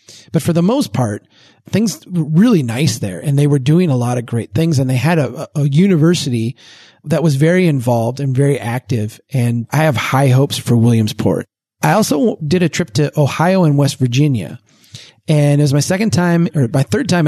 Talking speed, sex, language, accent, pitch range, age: 205 wpm, male, English, American, 125-155 Hz, 30-49